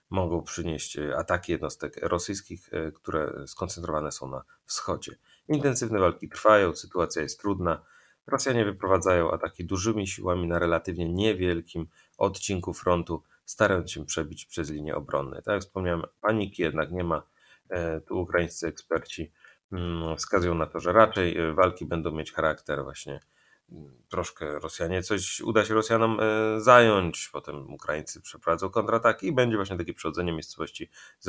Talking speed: 135 wpm